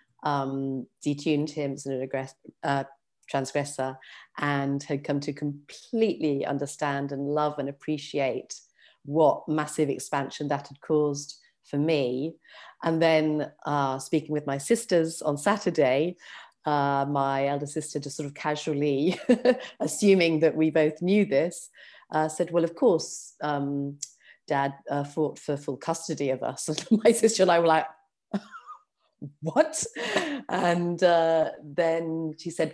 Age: 40-59